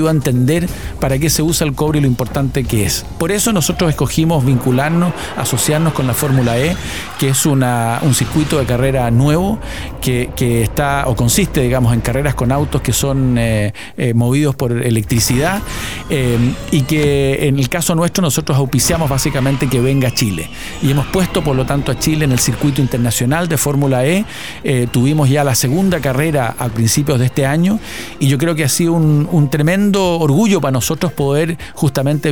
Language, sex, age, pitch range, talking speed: Spanish, male, 50-69, 130-160 Hz, 190 wpm